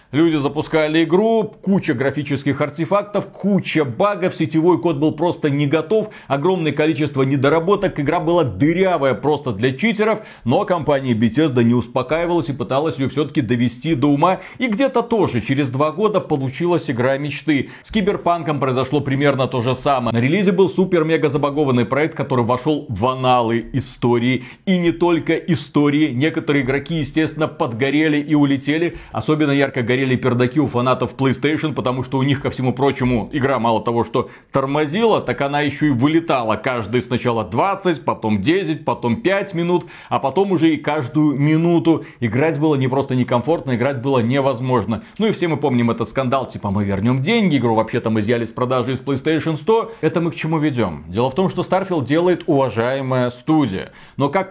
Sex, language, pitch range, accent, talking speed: male, Russian, 130-165 Hz, native, 170 wpm